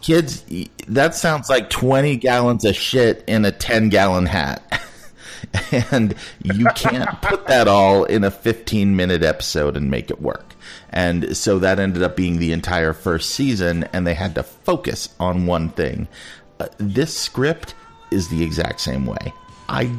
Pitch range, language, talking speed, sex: 80-105 Hz, English, 155 wpm, male